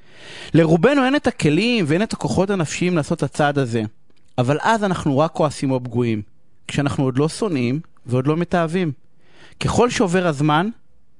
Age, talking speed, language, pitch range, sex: 30-49, 155 wpm, Hebrew, 145-220 Hz, male